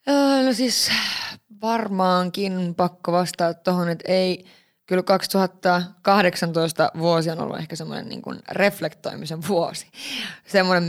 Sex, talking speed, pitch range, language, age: female, 105 wpm, 175-210 Hz, Finnish, 20-39